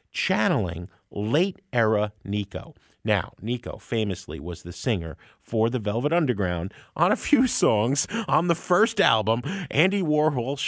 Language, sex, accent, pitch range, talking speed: English, male, American, 105-160 Hz, 130 wpm